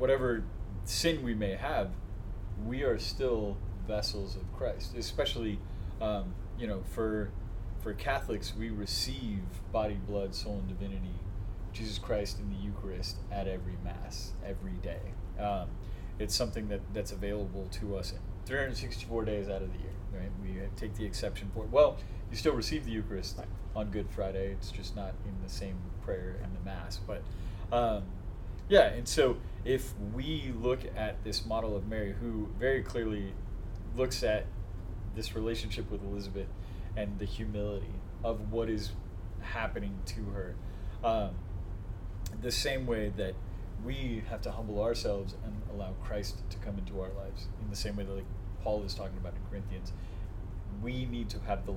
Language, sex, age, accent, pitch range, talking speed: English, male, 30-49, American, 95-105 Hz, 160 wpm